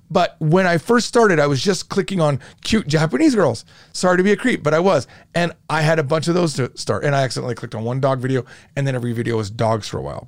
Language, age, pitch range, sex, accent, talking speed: English, 30-49, 125-185 Hz, male, American, 275 wpm